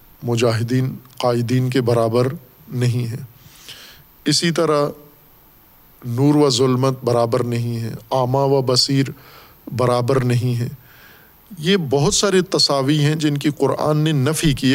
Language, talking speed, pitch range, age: Urdu, 125 wpm, 125-150 Hz, 50-69